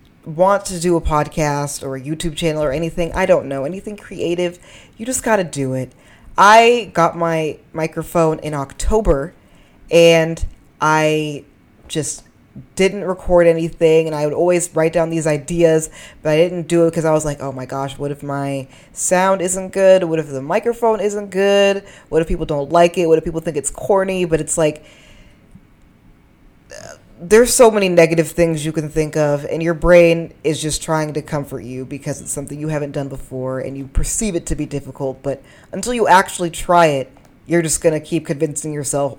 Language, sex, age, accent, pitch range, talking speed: English, female, 20-39, American, 145-185 Hz, 195 wpm